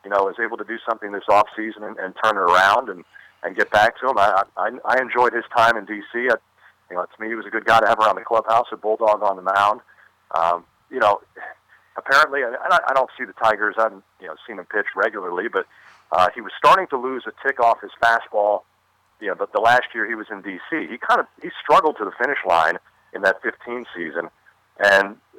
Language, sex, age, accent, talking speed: English, male, 50-69, American, 240 wpm